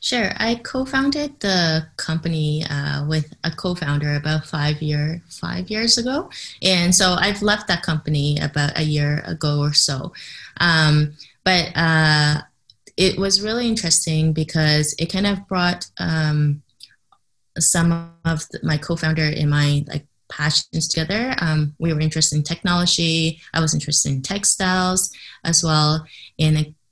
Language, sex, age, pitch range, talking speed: English, female, 20-39, 145-165 Hz, 145 wpm